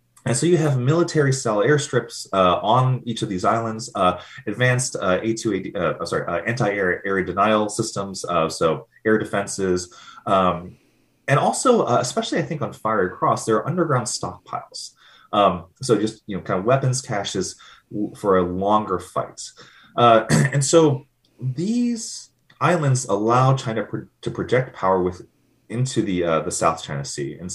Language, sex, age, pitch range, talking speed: English, male, 30-49, 95-135 Hz, 170 wpm